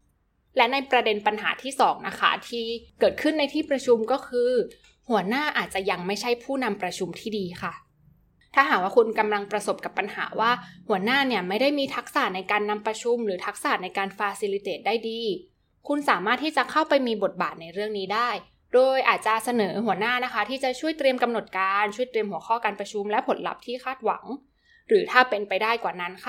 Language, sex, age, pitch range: Thai, female, 20-39, 205-270 Hz